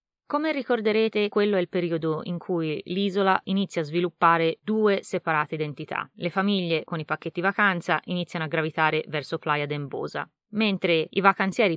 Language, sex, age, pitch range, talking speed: Italian, female, 20-39, 160-205 Hz, 155 wpm